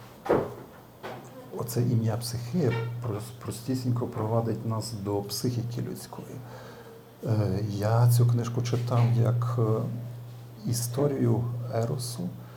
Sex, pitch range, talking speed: male, 110-120 Hz, 75 wpm